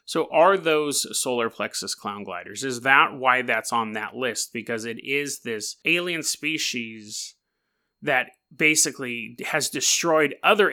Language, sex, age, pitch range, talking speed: English, male, 30-49, 115-150 Hz, 140 wpm